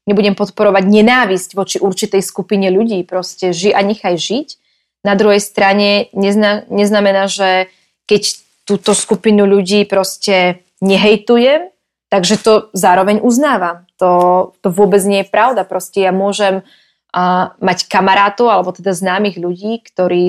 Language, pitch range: Slovak, 190-225 Hz